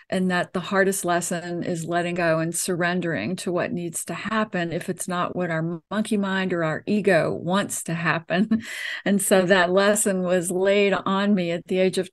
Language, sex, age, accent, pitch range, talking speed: English, female, 50-69, American, 185-210 Hz, 200 wpm